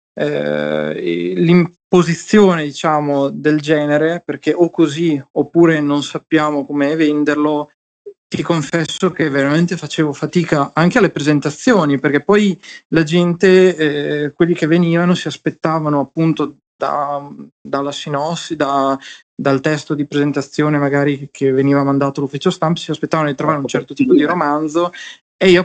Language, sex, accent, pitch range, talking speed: Italian, male, native, 140-170 Hz, 135 wpm